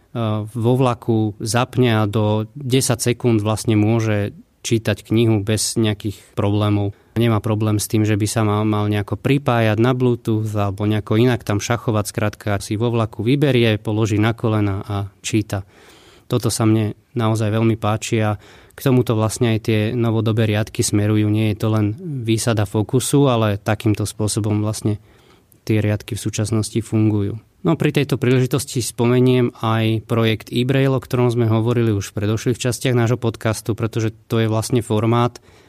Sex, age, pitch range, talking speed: male, 20-39, 105-120 Hz, 160 wpm